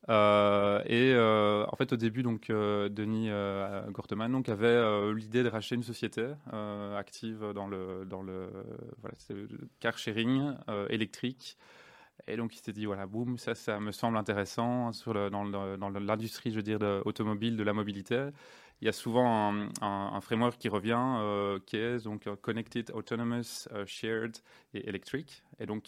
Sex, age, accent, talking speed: male, 20-39, French, 190 wpm